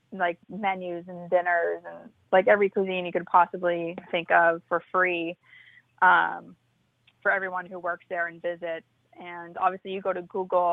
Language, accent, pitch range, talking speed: English, American, 170-185 Hz, 160 wpm